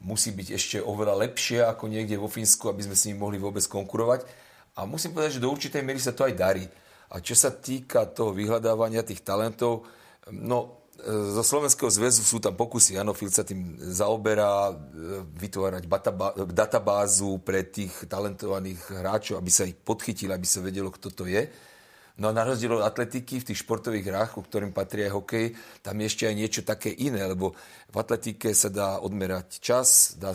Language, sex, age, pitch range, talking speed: Slovak, male, 40-59, 95-120 Hz, 180 wpm